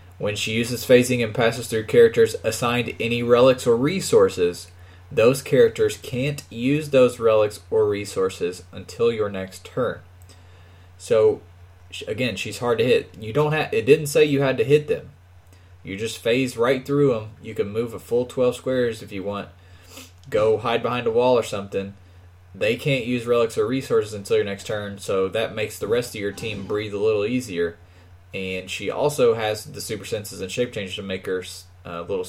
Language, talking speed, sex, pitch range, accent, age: English, 190 wpm, male, 95-140 Hz, American, 20-39